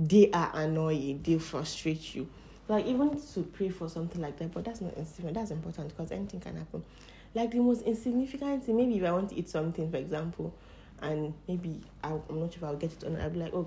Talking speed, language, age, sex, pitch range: 230 wpm, English, 20-39, female, 155-180 Hz